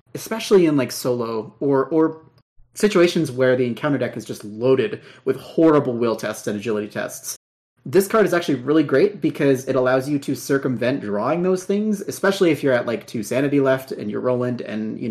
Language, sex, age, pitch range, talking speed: English, male, 30-49, 125-155 Hz, 195 wpm